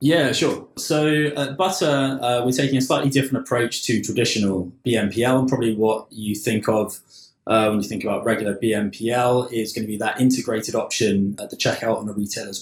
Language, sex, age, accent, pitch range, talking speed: English, male, 20-39, British, 110-130 Hz, 195 wpm